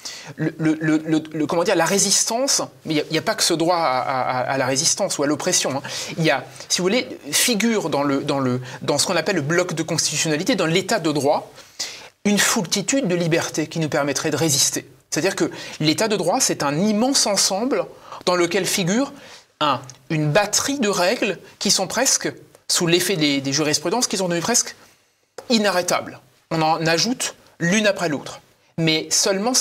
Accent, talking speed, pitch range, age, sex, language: French, 195 wpm, 150-200 Hz, 30-49, male, French